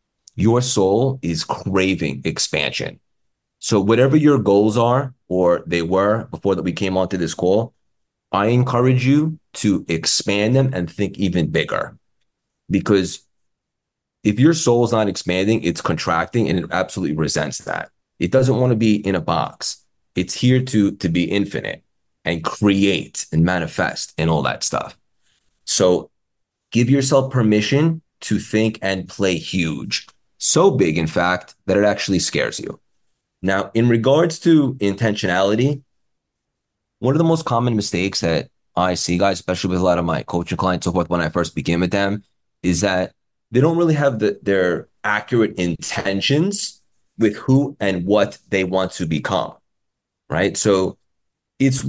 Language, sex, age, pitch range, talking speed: English, male, 30-49, 90-120 Hz, 160 wpm